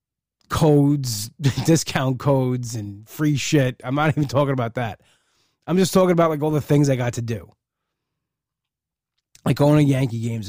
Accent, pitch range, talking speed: American, 115-145 Hz, 165 wpm